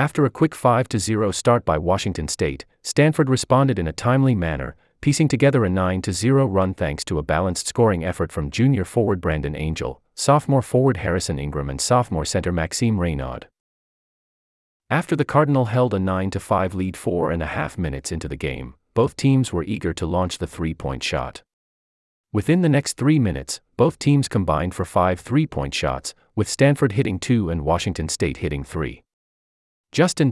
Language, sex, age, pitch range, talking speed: English, male, 30-49, 80-130 Hz, 170 wpm